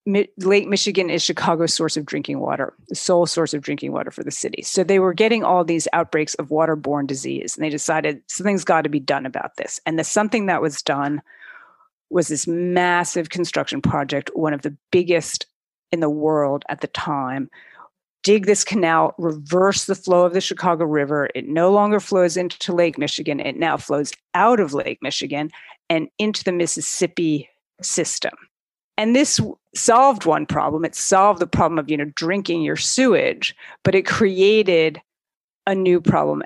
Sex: female